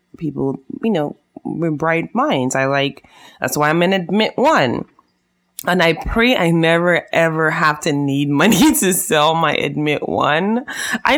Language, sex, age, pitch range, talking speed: English, female, 20-39, 135-175 Hz, 160 wpm